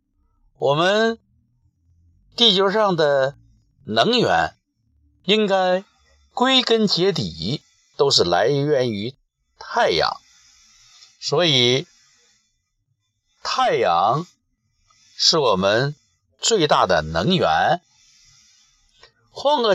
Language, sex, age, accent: Chinese, male, 50-69, native